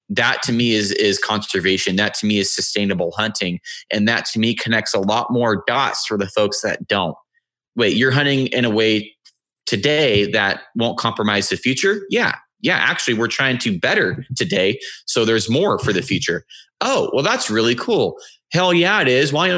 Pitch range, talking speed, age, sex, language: 100-130 Hz, 190 wpm, 20-39, male, English